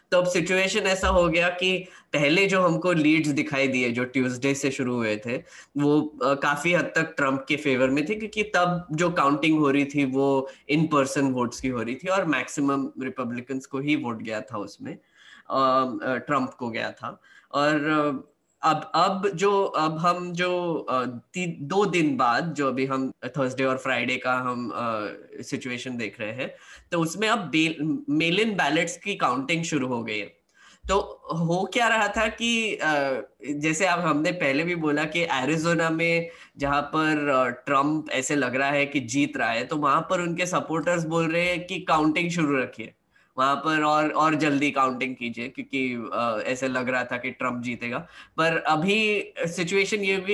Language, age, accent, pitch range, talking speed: Hindi, 10-29, native, 135-175 Hz, 175 wpm